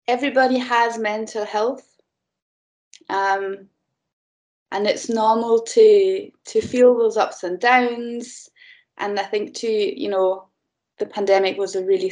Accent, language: British, English